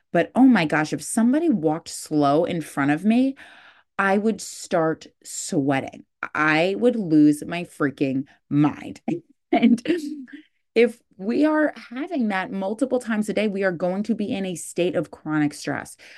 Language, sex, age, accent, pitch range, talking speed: English, female, 30-49, American, 150-215 Hz, 160 wpm